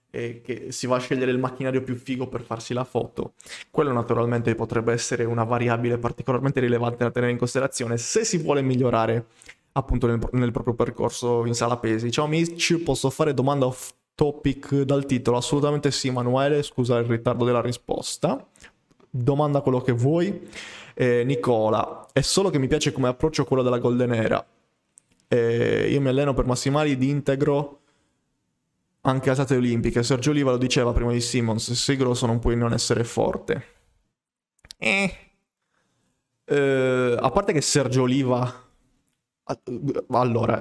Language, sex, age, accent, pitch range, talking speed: Italian, male, 20-39, native, 120-140 Hz, 160 wpm